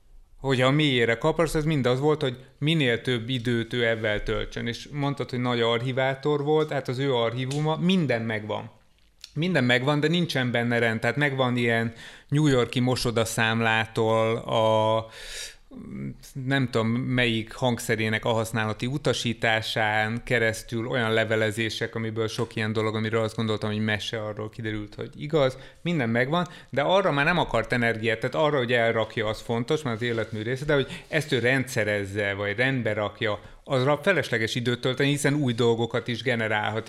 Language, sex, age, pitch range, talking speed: Hungarian, male, 30-49, 115-135 Hz, 160 wpm